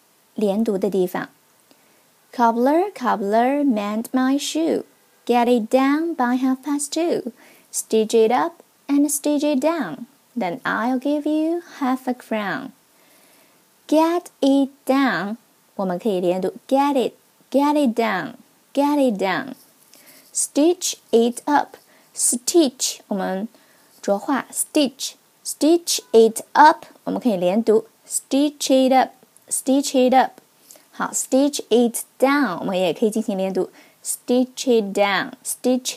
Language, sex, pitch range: Chinese, female, 225-290 Hz